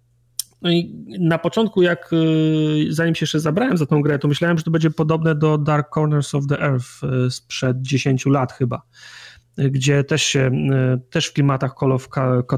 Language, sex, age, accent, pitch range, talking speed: Polish, male, 30-49, native, 135-155 Hz, 165 wpm